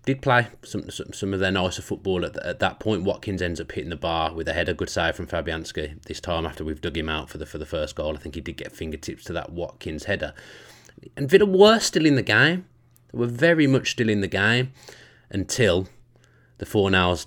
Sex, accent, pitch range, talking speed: male, British, 85-110 Hz, 235 wpm